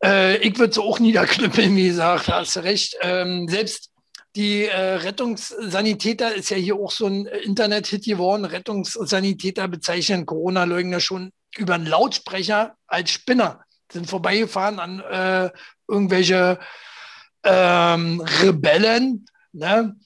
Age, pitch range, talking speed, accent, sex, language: 60-79, 165-210 Hz, 125 wpm, German, male, German